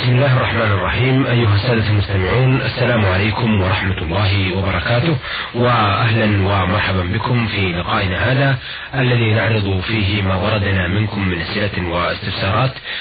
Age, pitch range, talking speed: 30-49, 95-120 Hz, 125 wpm